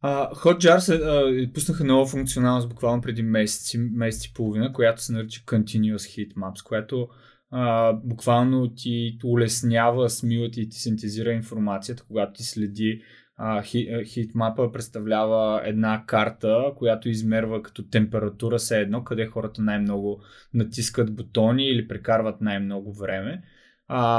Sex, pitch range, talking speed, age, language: male, 110-125 Hz, 130 wpm, 20-39, Bulgarian